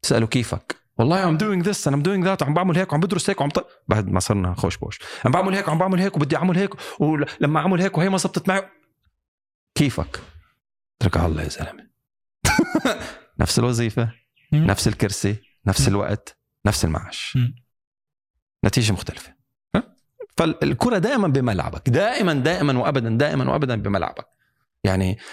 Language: Arabic